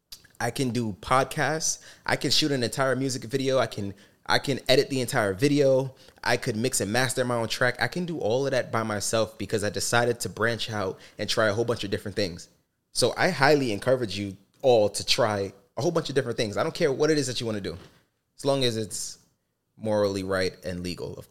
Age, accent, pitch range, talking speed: 20-39, American, 100-130 Hz, 235 wpm